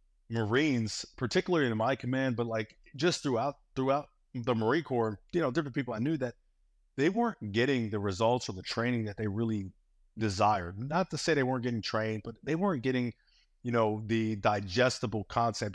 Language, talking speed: English, 185 wpm